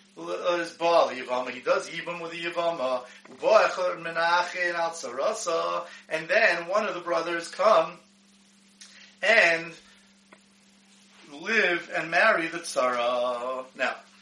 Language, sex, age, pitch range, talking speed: English, male, 30-49, 165-210 Hz, 90 wpm